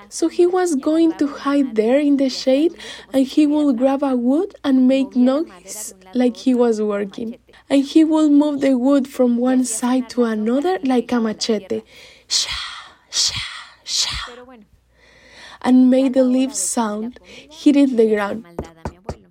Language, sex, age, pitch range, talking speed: English, female, 10-29, 220-290 Hz, 150 wpm